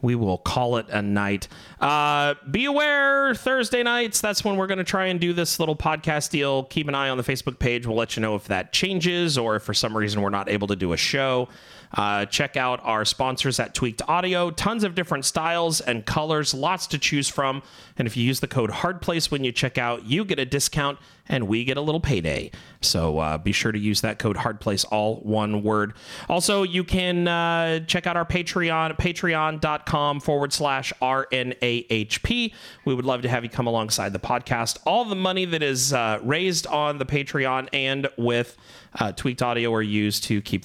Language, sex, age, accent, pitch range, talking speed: English, male, 30-49, American, 105-155 Hz, 210 wpm